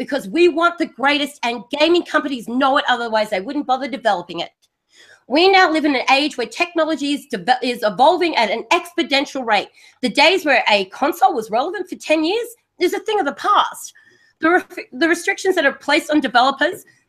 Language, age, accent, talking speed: English, 30-49, Australian, 195 wpm